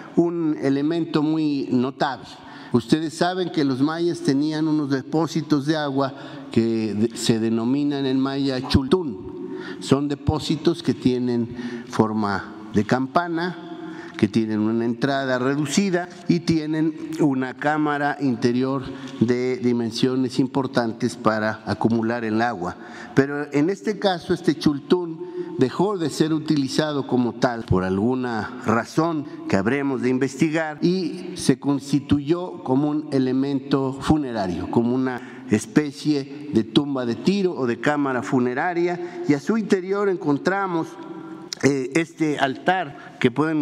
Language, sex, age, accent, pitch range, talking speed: Spanish, male, 50-69, Mexican, 125-160 Hz, 125 wpm